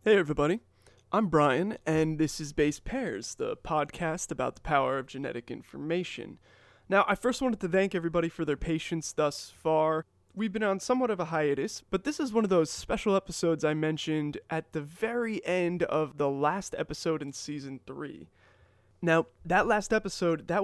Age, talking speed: 20-39, 180 wpm